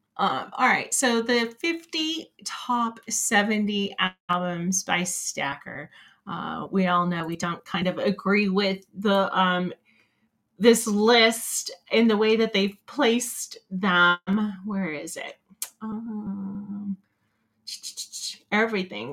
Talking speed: 115 wpm